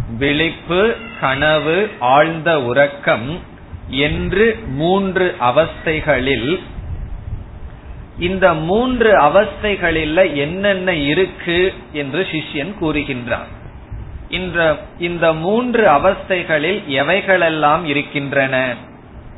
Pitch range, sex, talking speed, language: 120-180 Hz, male, 55 wpm, Tamil